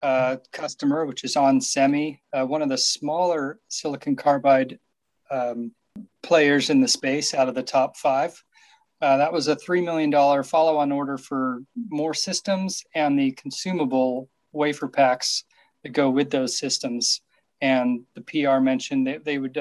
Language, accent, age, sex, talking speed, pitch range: English, American, 40-59, male, 155 wpm, 135-165 Hz